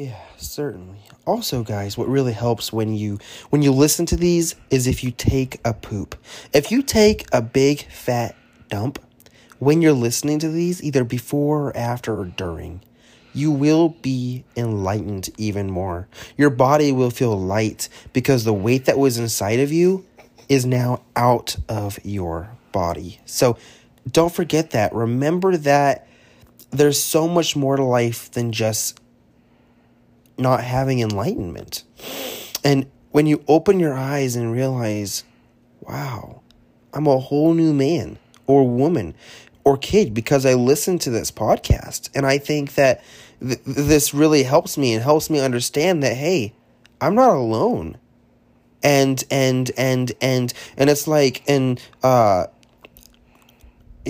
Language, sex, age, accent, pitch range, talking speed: English, male, 30-49, American, 115-145 Hz, 145 wpm